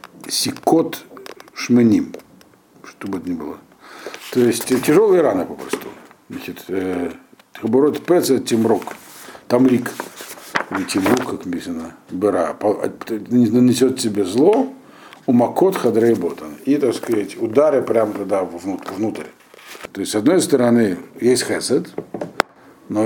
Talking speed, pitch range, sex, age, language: 95 wpm, 110-135 Hz, male, 60-79, Russian